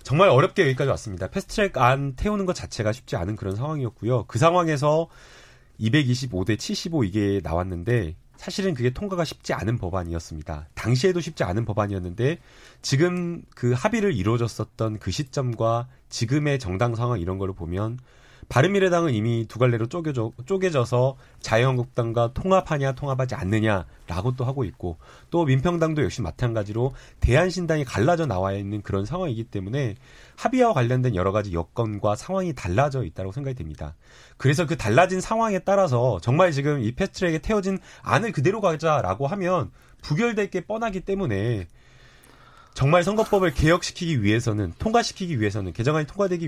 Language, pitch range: Korean, 110-165 Hz